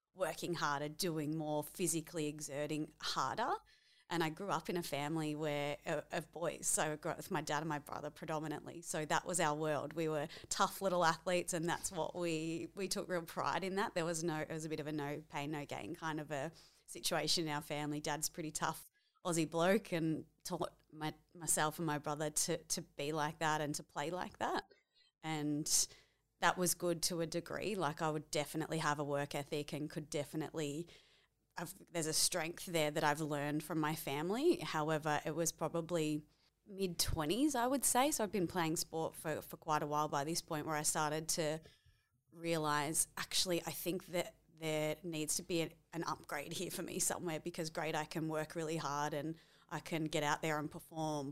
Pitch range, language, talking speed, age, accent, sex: 150-170 Hz, English, 200 wpm, 30-49, Australian, female